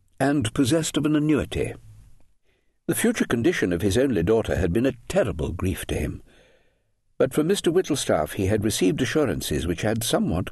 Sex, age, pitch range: male, 60-79, 90-135 Hz